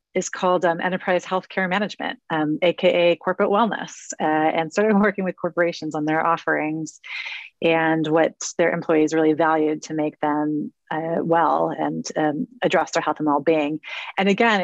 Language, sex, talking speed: English, female, 160 wpm